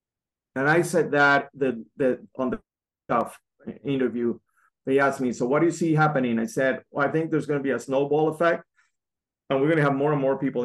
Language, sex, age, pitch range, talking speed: English, male, 30-49, 120-150 Hz, 220 wpm